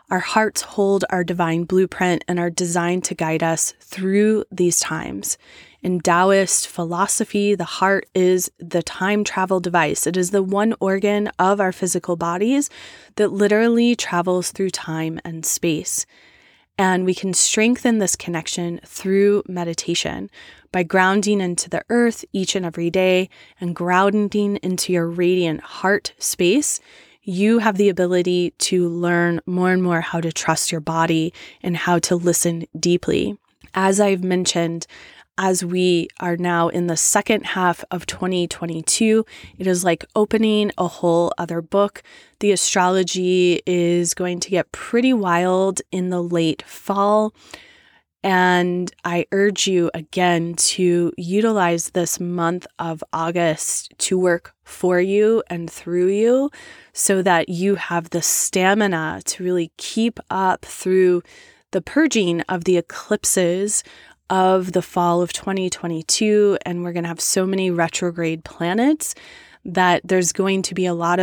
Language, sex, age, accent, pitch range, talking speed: English, female, 20-39, American, 175-195 Hz, 145 wpm